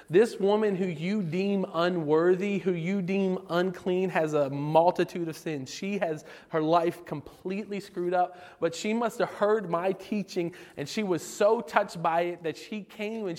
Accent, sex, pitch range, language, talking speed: American, male, 180-240 Hz, English, 180 wpm